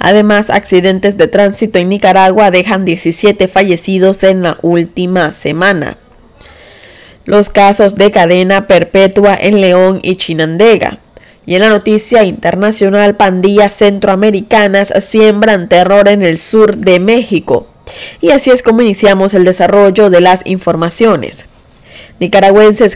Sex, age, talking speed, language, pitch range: female, 10-29, 125 wpm, Spanish, 185-215 Hz